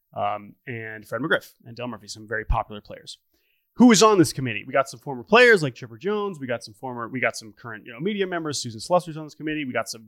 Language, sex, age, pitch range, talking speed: English, male, 30-49, 125-185 Hz, 270 wpm